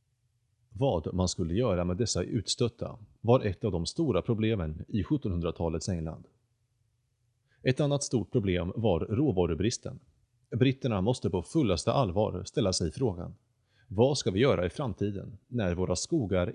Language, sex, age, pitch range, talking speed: Swedish, male, 30-49, 95-125 Hz, 140 wpm